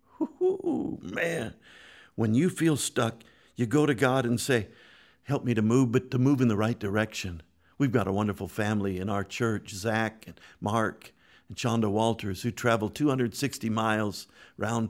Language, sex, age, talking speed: English, male, 50-69, 170 wpm